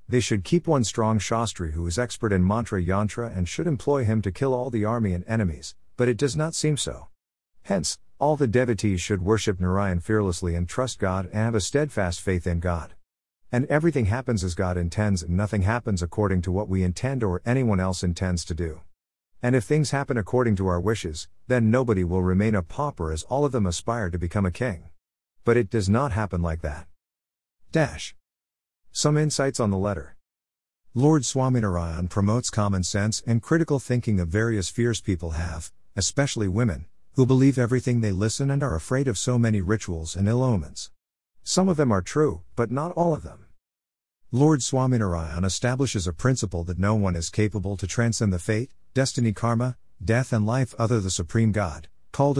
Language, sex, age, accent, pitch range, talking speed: English, male, 50-69, American, 90-120 Hz, 190 wpm